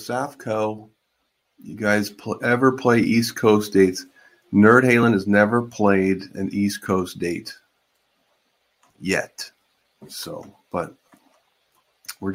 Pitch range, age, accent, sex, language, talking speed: 85-105 Hz, 40-59, American, male, English, 100 wpm